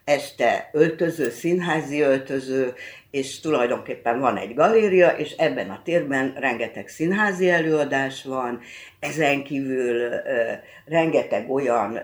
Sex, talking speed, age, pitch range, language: female, 110 wpm, 60-79, 125-170 Hz, Hungarian